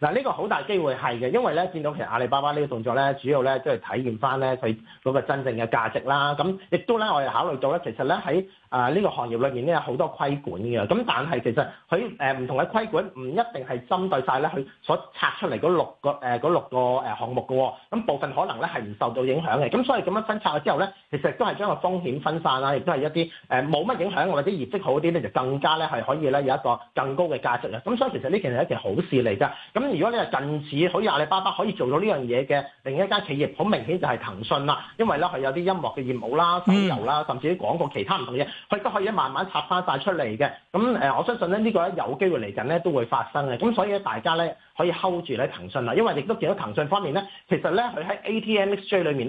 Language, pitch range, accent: Chinese, 135-190 Hz, native